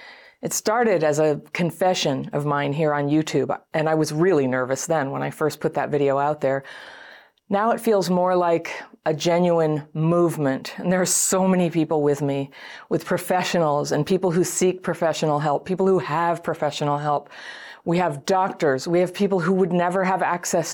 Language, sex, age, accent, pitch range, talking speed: English, female, 40-59, American, 150-195 Hz, 185 wpm